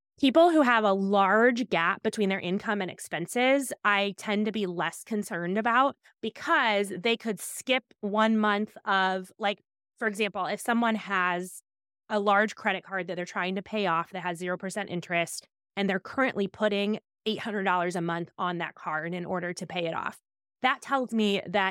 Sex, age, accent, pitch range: female, 20-39, American, 180-215 Hz